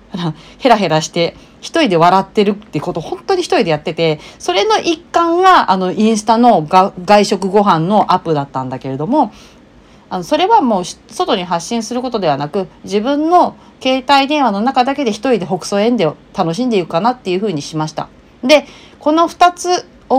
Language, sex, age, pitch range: Japanese, female, 40-59, 165-250 Hz